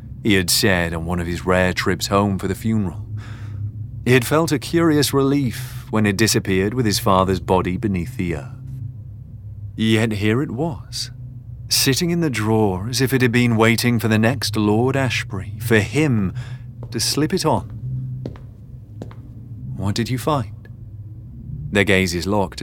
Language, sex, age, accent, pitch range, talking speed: English, male, 30-49, British, 105-120 Hz, 160 wpm